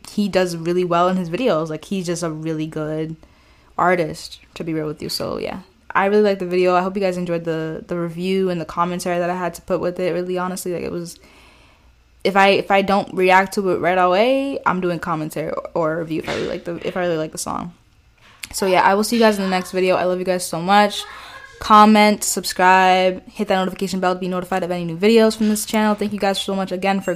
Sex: female